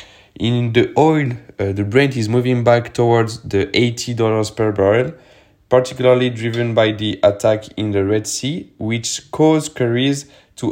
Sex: male